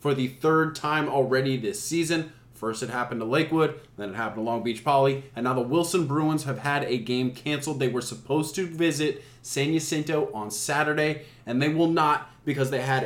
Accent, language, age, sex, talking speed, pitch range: American, English, 20-39, male, 205 wpm, 125-155 Hz